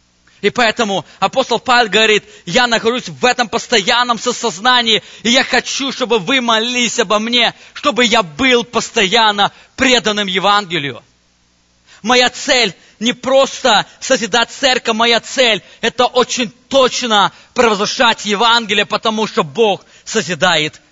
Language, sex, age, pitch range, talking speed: English, male, 20-39, 170-235 Hz, 120 wpm